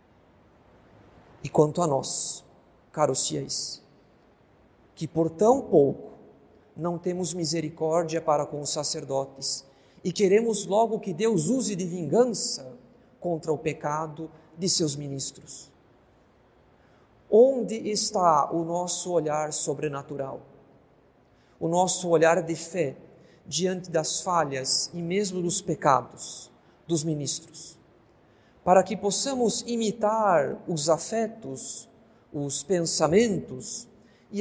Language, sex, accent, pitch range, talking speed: Portuguese, male, Brazilian, 150-185 Hz, 105 wpm